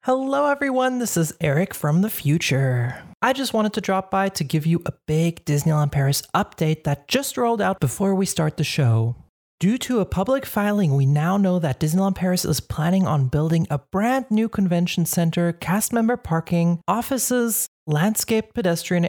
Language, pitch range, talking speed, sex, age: English, 155-205 Hz, 180 wpm, male, 30-49